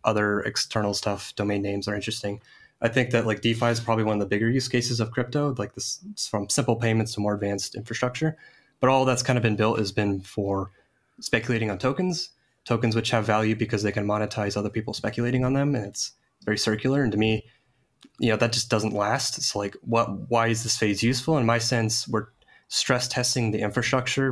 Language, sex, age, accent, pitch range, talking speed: English, male, 20-39, American, 105-125 Hz, 210 wpm